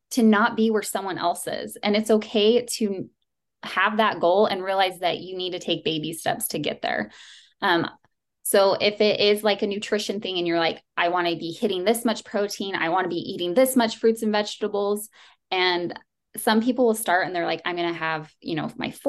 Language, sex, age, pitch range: English, female, 20-39, 170-220 Hz